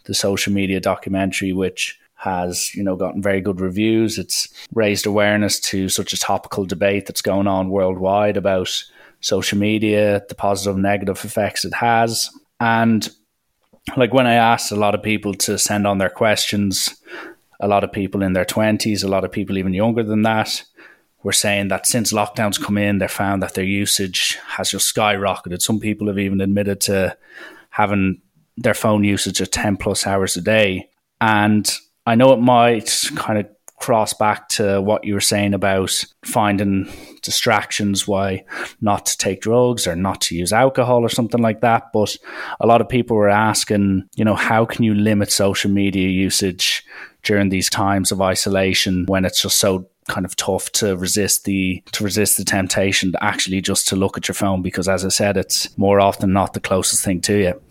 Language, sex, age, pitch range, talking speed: English, male, 20-39, 95-105 Hz, 190 wpm